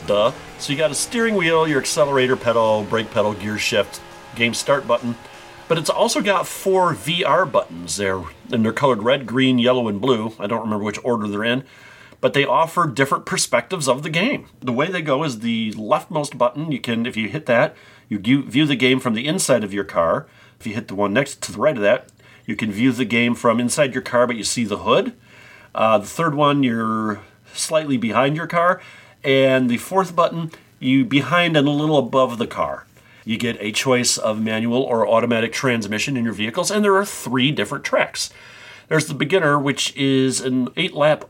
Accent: American